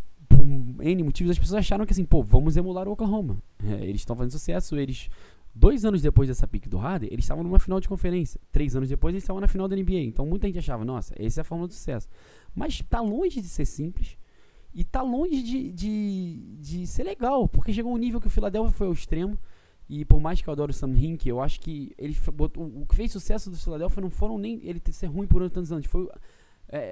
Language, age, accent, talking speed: Portuguese, 20-39, Brazilian, 240 wpm